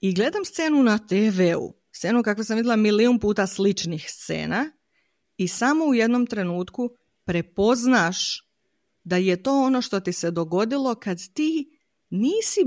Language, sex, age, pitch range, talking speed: Croatian, female, 30-49, 190-265 Hz, 140 wpm